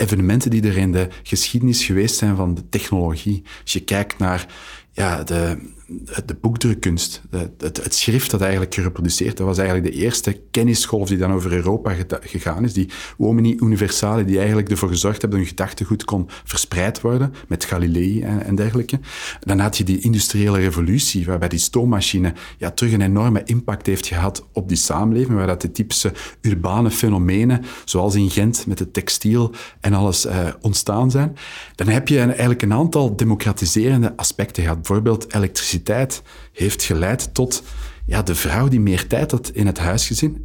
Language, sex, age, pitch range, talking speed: Dutch, male, 40-59, 95-115 Hz, 175 wpm